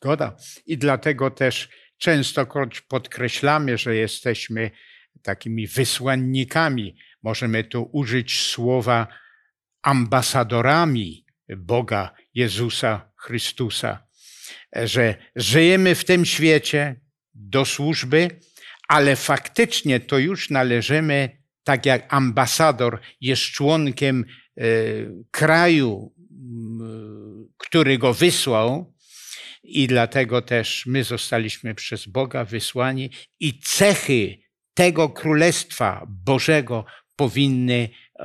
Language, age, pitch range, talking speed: Polish, 60-79, 115-145 Hz, 80 wpm